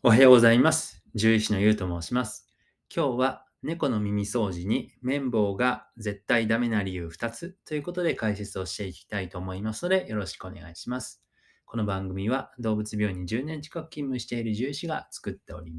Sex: male